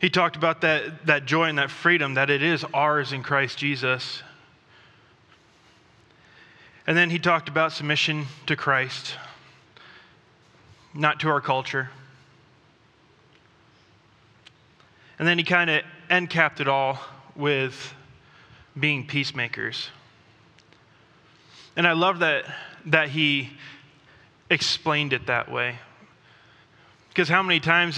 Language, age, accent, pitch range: English, 20-39, American, 135-160 Hz